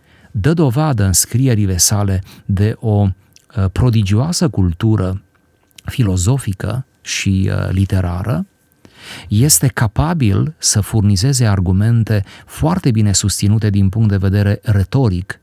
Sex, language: male, Romanian